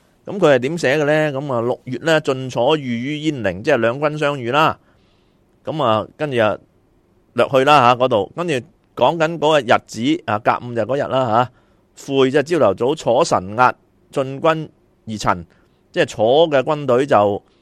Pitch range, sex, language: 120-160 Hz, male, Chinese